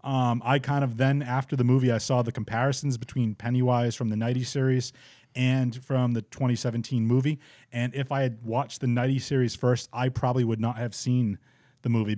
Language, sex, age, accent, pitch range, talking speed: English, male, 30-49, American, 115-135 Hz, 195 wpm